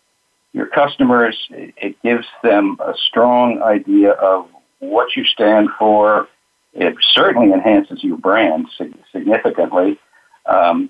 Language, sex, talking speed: English, male, 110 wpm